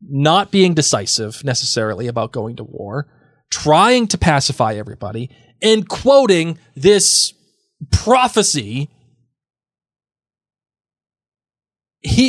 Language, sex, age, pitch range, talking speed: English, male, 20-39, 120-155 Hz, 85 wpm